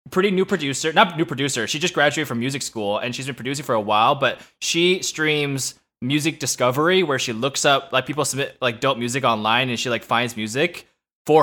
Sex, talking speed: male, 215 wpm